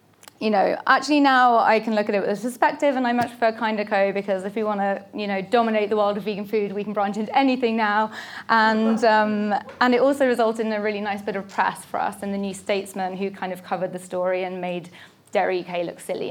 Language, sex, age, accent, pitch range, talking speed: English, female, 20-39, British, 205-245 Hz, 255 wpm